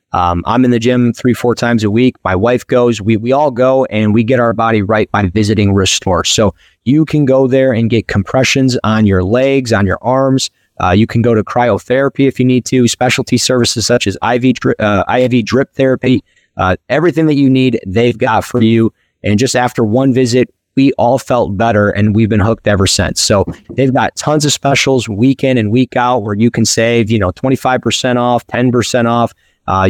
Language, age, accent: English, 30-49, American